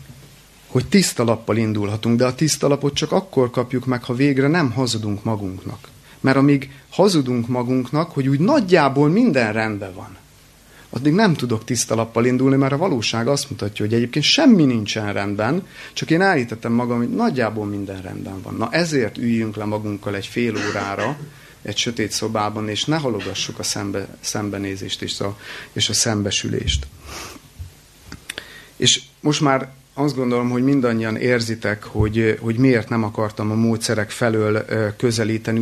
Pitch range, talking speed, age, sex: 105-135 Hz, 155 wpm, 30-49, male